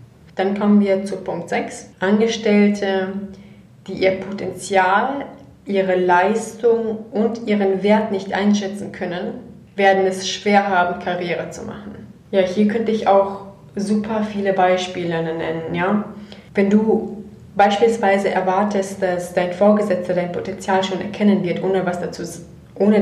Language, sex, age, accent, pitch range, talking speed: German, female, 30-49, German, 190-210 Hz, 135 wpm